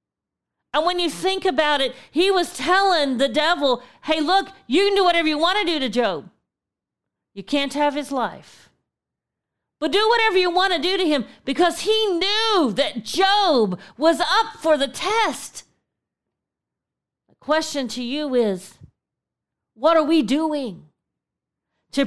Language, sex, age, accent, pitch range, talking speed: English, female, 40-59, American, 260-330 Hz, 155 wpm